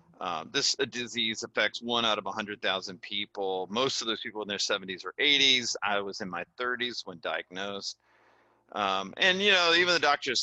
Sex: male